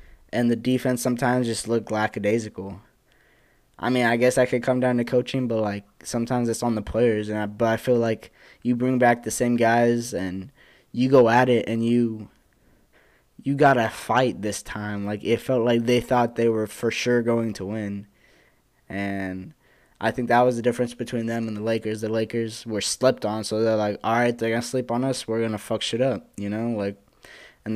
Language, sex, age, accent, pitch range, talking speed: English, male, 10-29, American, 110-125 Hz, 215 wpm